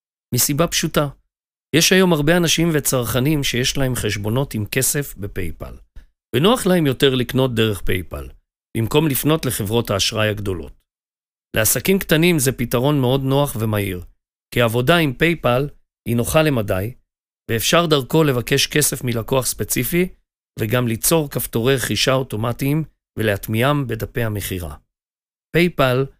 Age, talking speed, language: 40-59, 120 wpm, Hebrew